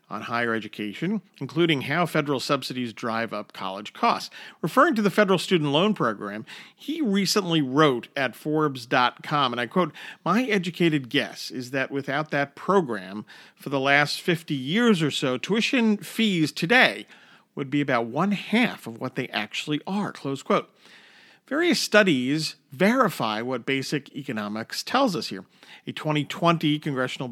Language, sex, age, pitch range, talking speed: English, male, 50-69, 125-180 Hz, 145 wpm